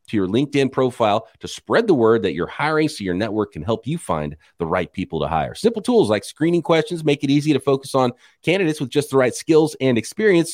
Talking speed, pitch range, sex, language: 240 wpm, 110-185 Hz, male, English